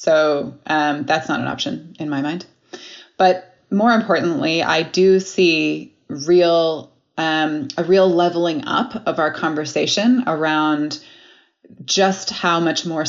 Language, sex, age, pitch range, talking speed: English, female, 20-39, 155-185 Hz, 135 wpm